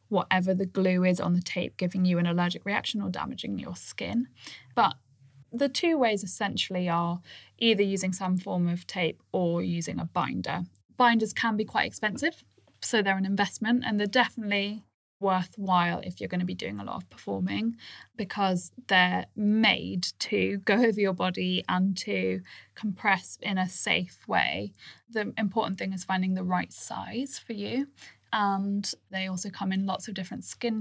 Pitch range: 180-215 Hz